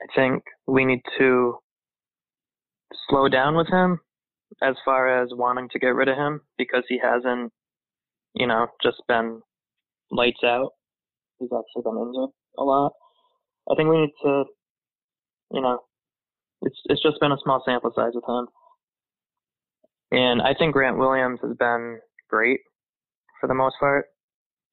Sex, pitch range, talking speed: male, 120-145 Hz, 150 wpm